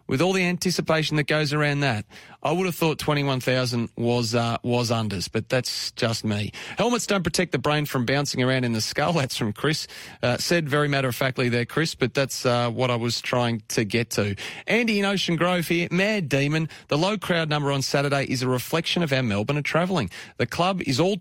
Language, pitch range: English, 130-170 Hz